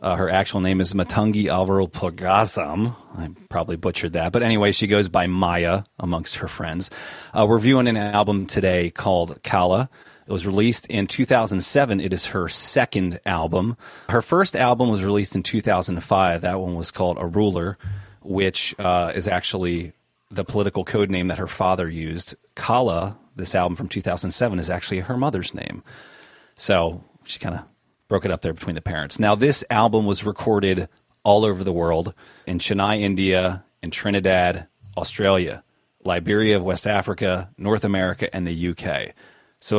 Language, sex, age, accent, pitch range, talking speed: English, male, 30-49, American, 90-105 Hz, 165 wpm